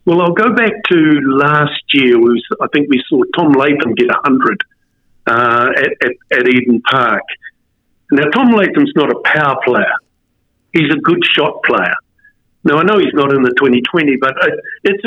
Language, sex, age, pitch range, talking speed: English, male, 50-69, 140-210 Hz, 165 wpm